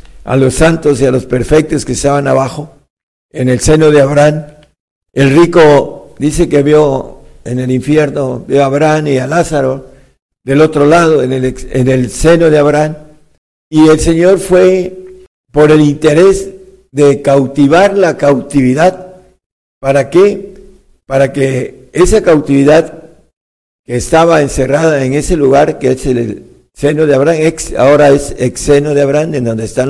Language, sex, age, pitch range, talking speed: Spanish, male, 50-69, 130-165 Hz, 155 wpm